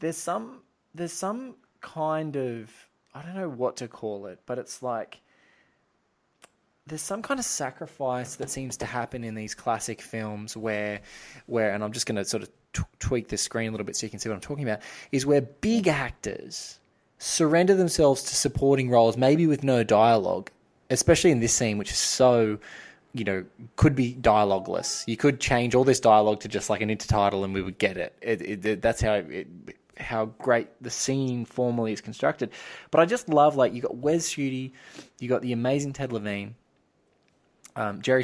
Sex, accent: male, Australian